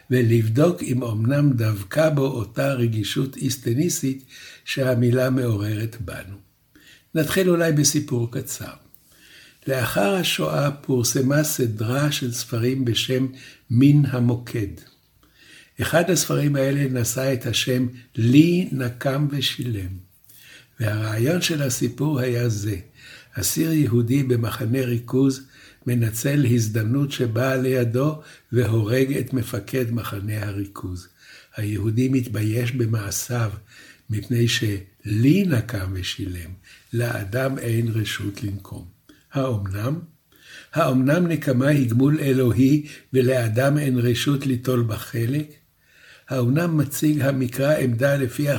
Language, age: Hebrew, 60-79